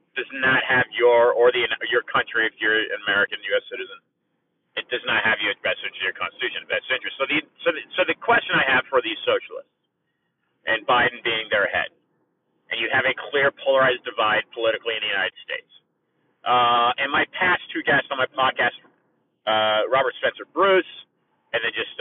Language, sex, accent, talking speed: English, male, American, 190 wpm